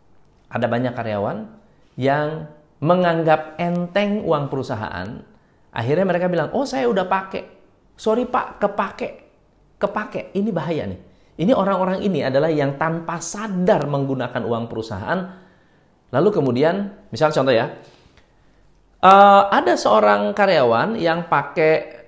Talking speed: 115 wpm